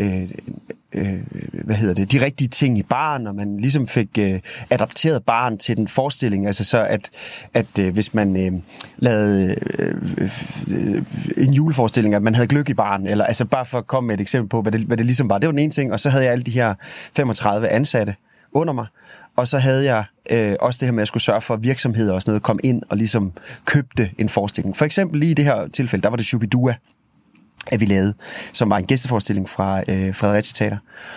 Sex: male